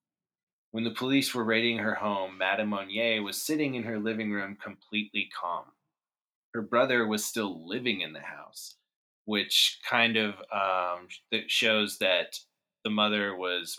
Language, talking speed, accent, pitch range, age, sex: English, 150 wpm, American, 95-120 Hz, 20-39, male